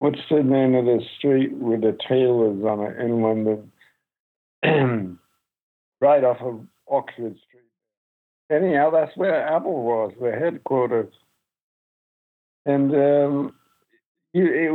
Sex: male